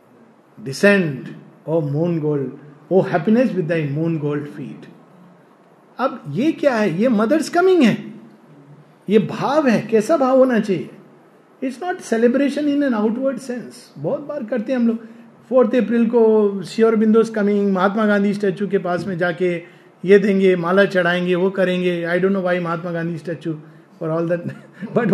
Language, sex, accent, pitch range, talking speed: Hindi, male, native, 180-245 Hz, 150 wpm